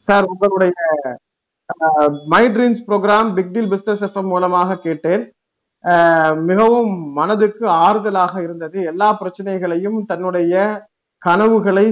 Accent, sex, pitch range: native, male, 180-220 Hz